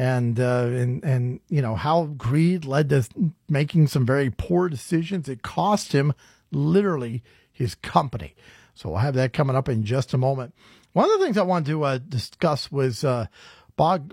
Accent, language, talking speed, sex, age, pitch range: American, English, 185 wpm, male, 40-59, 130-180 Hz